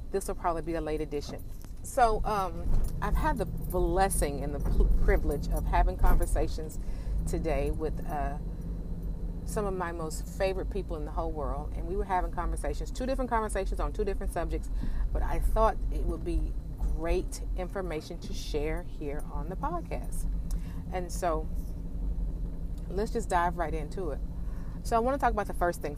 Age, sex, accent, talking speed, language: 40-59, female, American, 175 wpm, English